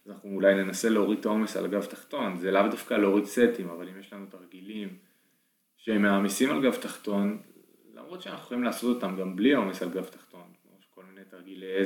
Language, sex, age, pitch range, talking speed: Hebrew, male, 20-39, 95-110 Hz, 195 wpm